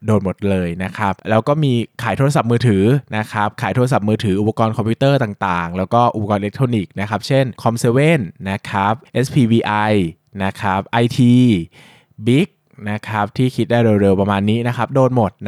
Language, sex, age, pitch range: Thai, male, 20-39, 100-125 Hz